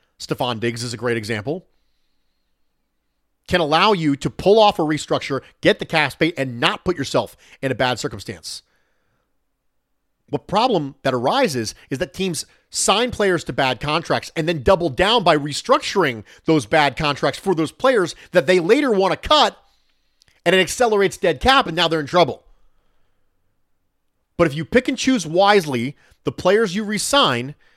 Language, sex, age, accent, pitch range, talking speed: English, male, 40-59, American, 135-195 Hz, 165 wpm